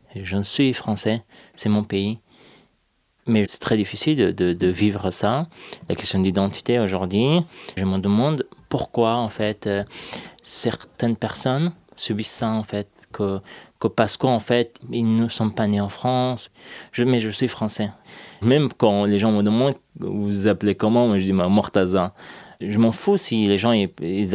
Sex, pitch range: male, 95-125 Hz